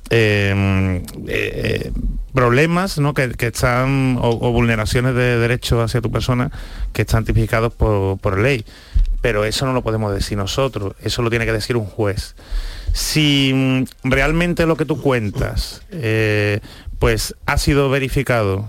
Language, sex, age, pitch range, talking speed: Spanish, male, 30-49, 110-135 Hz, 150 wpm